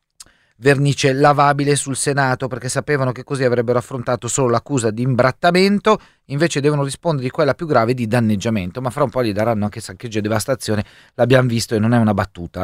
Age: 30-49